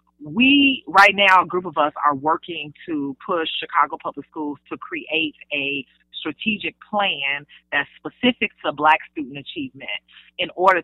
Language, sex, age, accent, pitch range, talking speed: English, female, 30-49, American, 145-185 Hz, 150 wpm